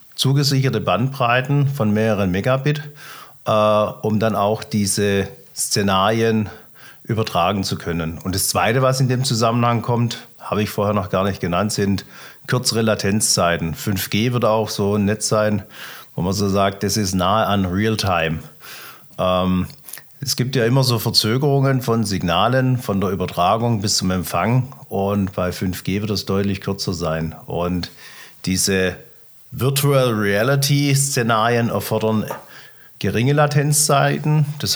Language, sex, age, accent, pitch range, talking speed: German, male, 40-59, German, 100-125 Hz, 135 wpm